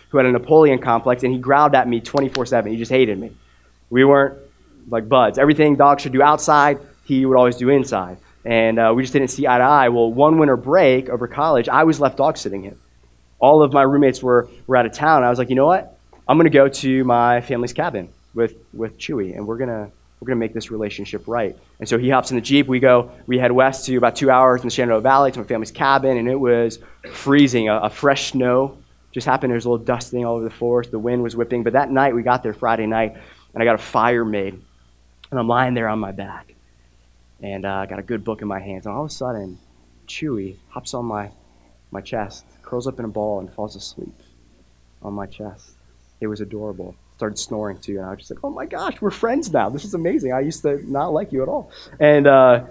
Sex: male